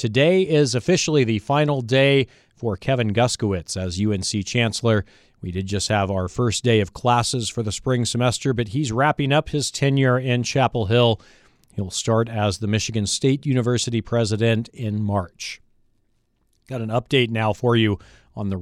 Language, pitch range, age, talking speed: English, 105-130 Hz, 40-59, 170 wpm